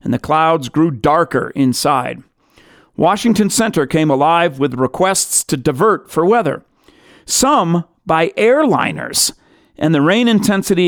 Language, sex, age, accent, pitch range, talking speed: English, male, 40-59, American, 150-195 Hz, 125 wpm